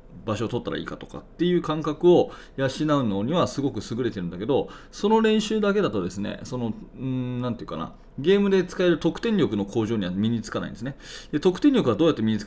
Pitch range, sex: 110-170 Hz, male